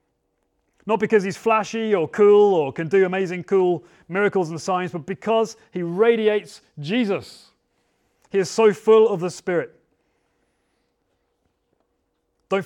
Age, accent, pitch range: 30-49, British, 185-220 Hz